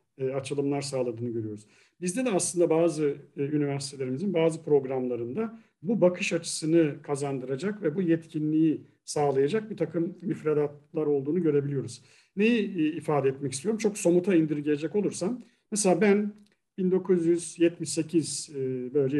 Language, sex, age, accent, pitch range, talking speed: Turkish, male, 50-69, native, 140-195 Hz, 120 wpm